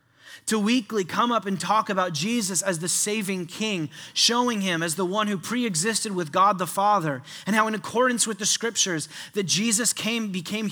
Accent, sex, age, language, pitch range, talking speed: American, male, 30-49, English, 150-210 Hz, 190 wpm